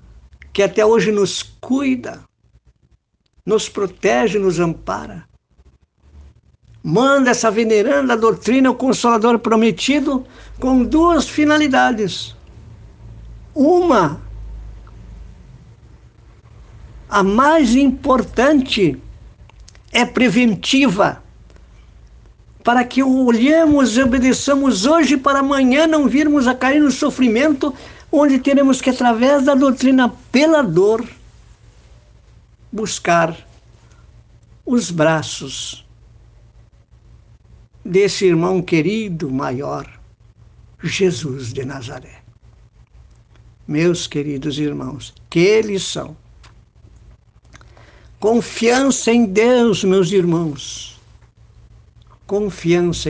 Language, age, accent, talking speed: Portuguese, 60-79, Brazilian, 80 wpm